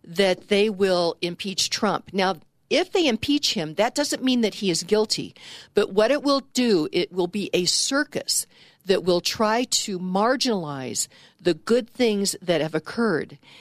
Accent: American